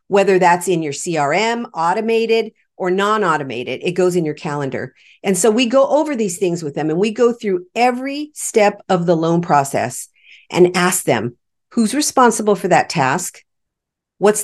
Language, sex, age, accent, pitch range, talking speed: English, female, 50-69, American, 175-225 Hz, 170 wpm